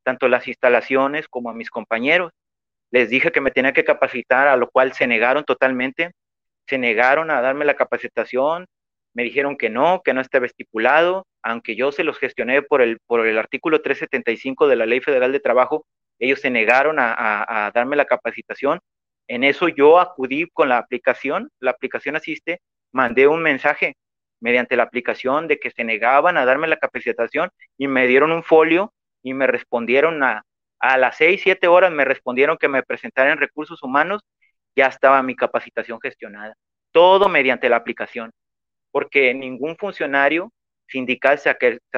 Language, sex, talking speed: Spanish, male, 170 wpm